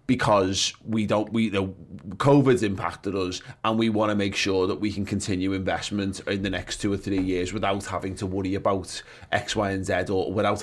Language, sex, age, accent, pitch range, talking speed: English, male, 20-39, British, 95-120 Hz, 210 wpm